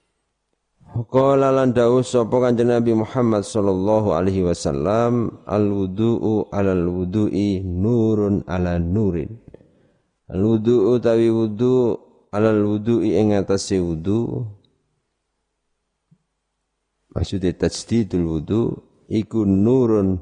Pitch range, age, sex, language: 85-110 Hz, 50-69, male, Indonesian